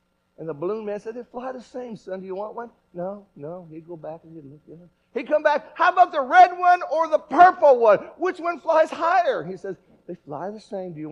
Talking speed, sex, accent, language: 260 wpm, male, American, English